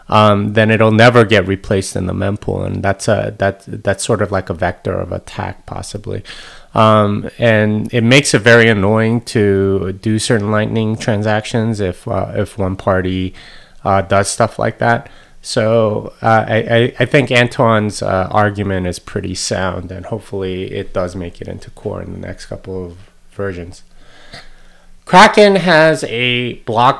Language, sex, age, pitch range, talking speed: English, male, 30-49, 95-115 Hz, 165 wpm